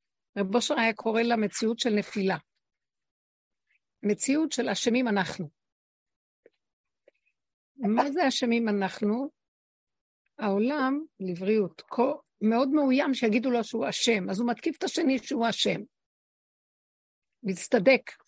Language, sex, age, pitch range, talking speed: Hebrew, female, 60-79, 210-275 Hz, 100 wpm